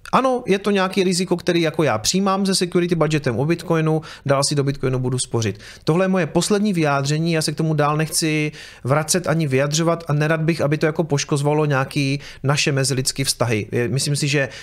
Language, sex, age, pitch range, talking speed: Czech, male, 30-49, 140-175 Hz, 195 wpm